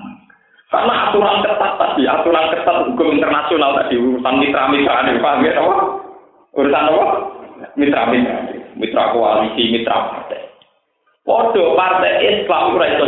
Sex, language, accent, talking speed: male, Indonesian, native, 120 wpm